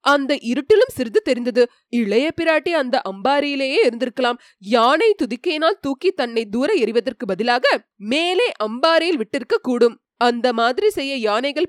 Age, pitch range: 20-39, 235-310 Hz